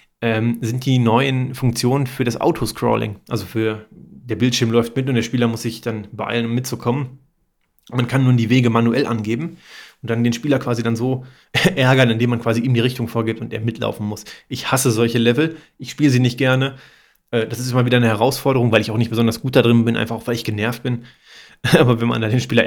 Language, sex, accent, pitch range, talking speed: German, male, German, 115-135 Hz, 220 wpm